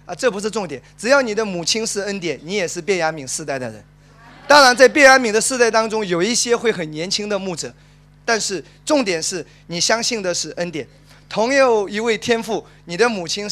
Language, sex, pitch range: Chinese, male, 170-245 Hz